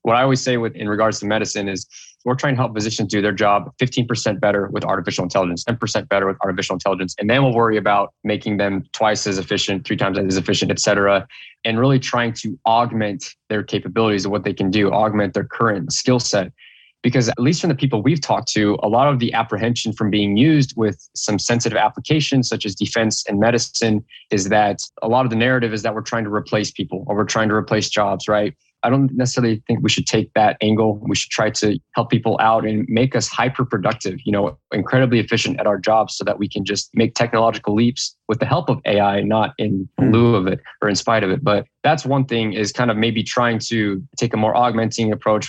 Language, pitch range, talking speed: English, 105-120 Hz, 225 wpm